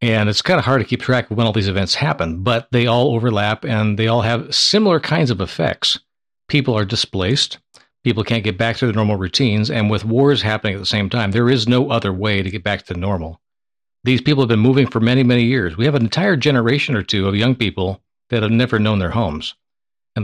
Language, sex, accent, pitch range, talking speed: English, male, American, 105-130 Hz, 245 wpm